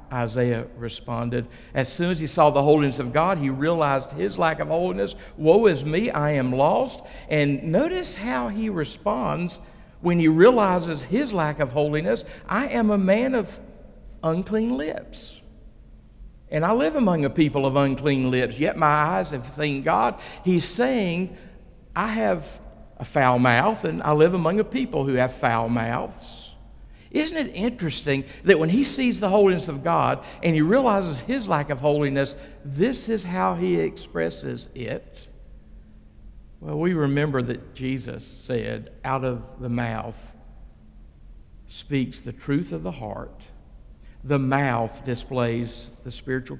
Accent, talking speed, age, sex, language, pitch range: American, 155 wpm, 50-69, male, English, 120-170 Hz